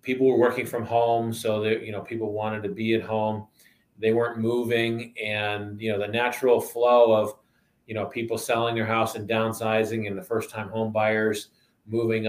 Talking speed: 195 wpm